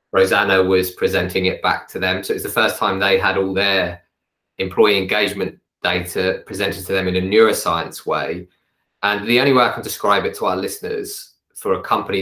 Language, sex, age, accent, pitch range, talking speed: English, male, 20-39, British, 95-120 Hz, 200 wpm